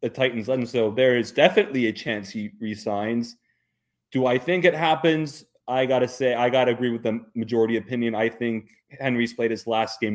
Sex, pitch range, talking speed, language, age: male, 120-150 Hz, 195 wpm, English, 30-49